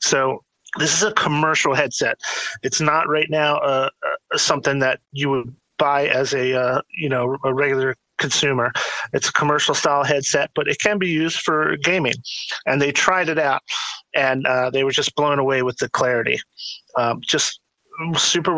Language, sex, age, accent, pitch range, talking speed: English, male, 30-49, American, 130-155 Hz, 175 wpm